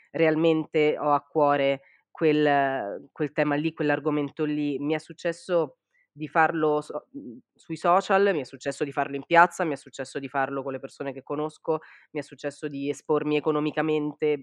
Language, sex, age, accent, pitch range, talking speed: Italian, female, 20-39, native, 145-165 Hz, 165 wpm